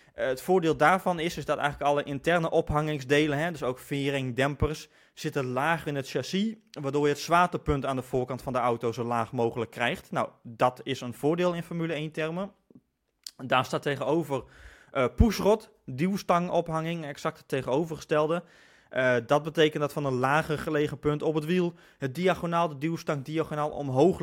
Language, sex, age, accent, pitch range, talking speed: Dutch, male, 20-39, Dutch, 135-160 Hz, 165 wpm